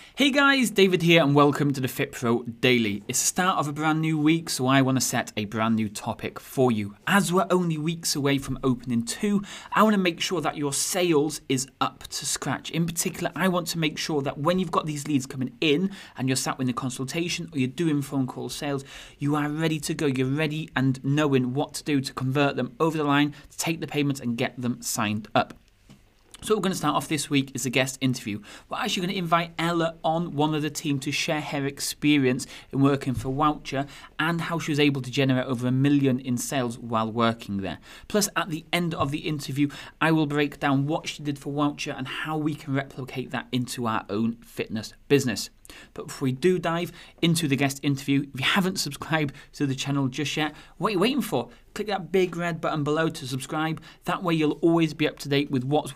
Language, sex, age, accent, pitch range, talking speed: English, male, 30-49, British, 130-165 Hz, 230 wpm